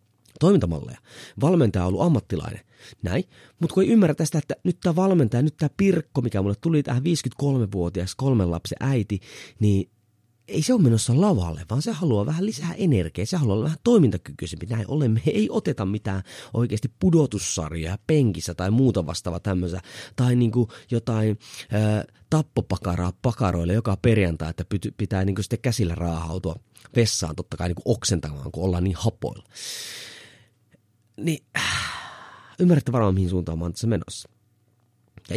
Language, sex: Finnish, male